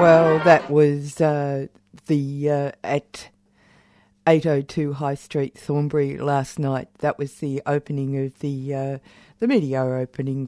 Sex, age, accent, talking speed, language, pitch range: female, 50-69, Australian, 130 wpm, English, 140-165 Hz